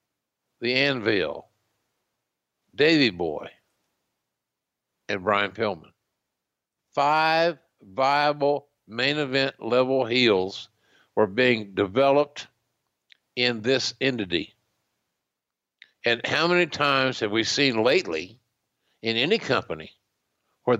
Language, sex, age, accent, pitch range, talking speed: English, male, 60-79, American, 110-135 Hz, 90 wpm